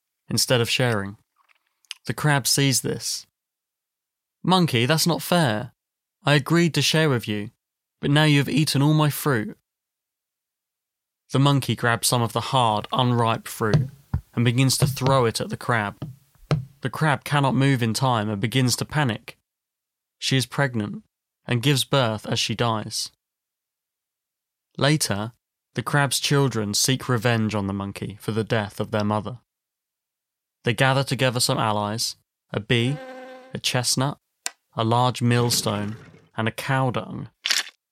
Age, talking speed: 20-39, 145 wpm